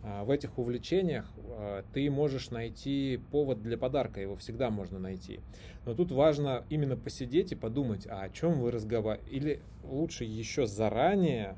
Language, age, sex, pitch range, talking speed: Russian, 20-39, male, 100-135 Hz, 150 wpm